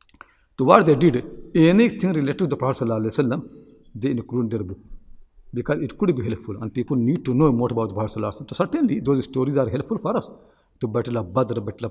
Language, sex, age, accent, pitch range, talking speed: English, male, 60-79, Indian, 115-150 Hz, 210 wpm